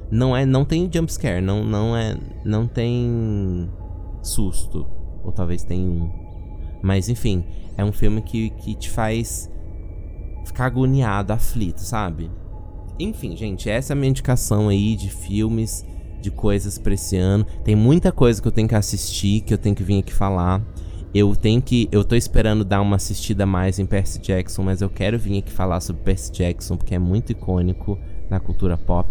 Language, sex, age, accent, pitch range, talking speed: Portuguese, male, 20-39, Brazilian, 90-110 Hz, 180 wpm